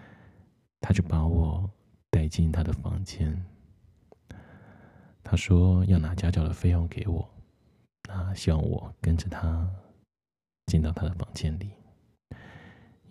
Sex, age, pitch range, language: male, 20-39, 80-105 Hz, Chinese